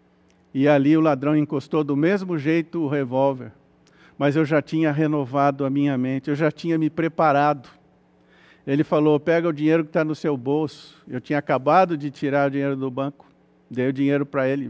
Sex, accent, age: male, Brazilian, 50-69